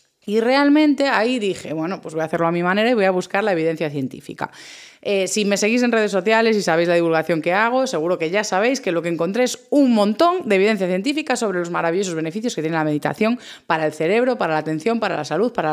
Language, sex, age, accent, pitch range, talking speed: Spanish, female, 20-39, Spanish, 165-230 Hz, 245 wpm